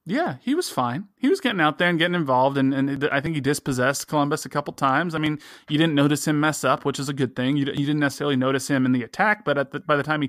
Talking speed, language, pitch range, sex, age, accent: 305 wpm, English, 130-150 Hz, male, 20-39, American